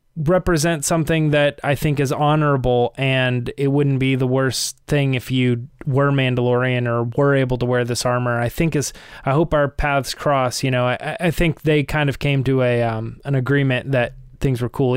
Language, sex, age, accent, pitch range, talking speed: English, male, 20-39, American, 130-155 Hz, 205 wpm